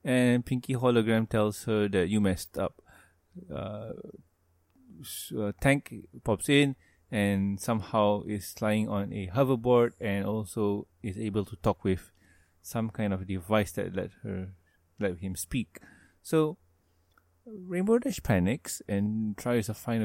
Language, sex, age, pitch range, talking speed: English, male, 20-39, 90-115 Hz, 130 wpm